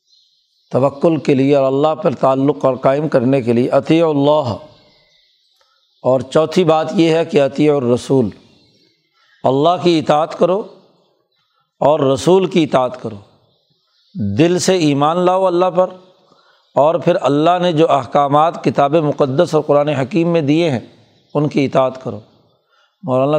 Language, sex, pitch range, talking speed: Urdu, male, 140-165 Hz, 145 wpm